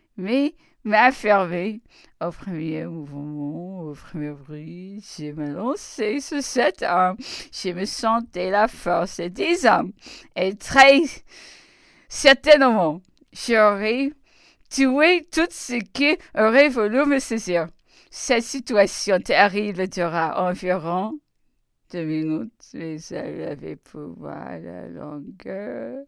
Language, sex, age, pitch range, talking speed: English, female, 50-69, 150-245 Hz, 105 wpm